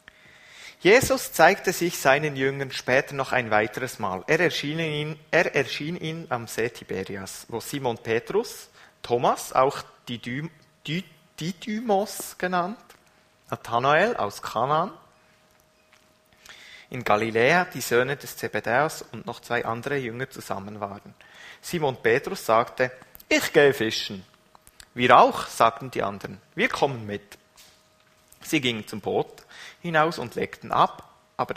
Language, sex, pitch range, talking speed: German, male, 120-160 Hz, 125 wpm